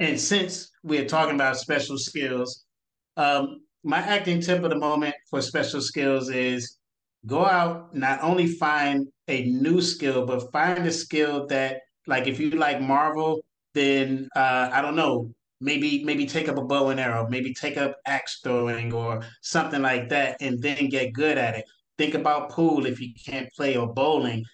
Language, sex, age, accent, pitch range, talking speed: English, male, 30-49, American, 125-150 Hz, 180 wpm